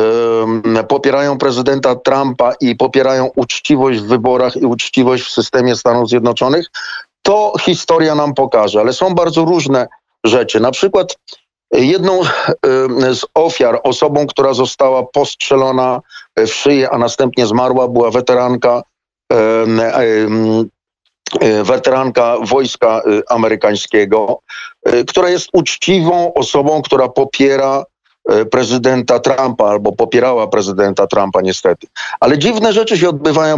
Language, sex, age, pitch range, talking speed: Polish, male, 40-59, 125-160 Hz, 105 wpm